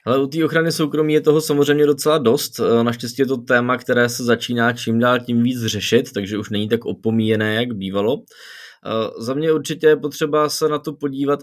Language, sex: Czech, male